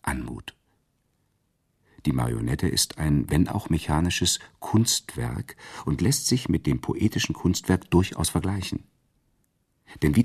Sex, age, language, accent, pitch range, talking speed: male, 50-69, German, German, 75-95 Hz, 115 wpm